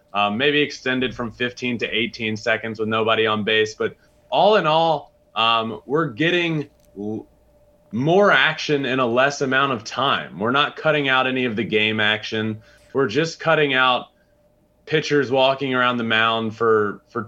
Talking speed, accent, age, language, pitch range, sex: 165 wpm, American, 20-39, English, 110-145 Hz, male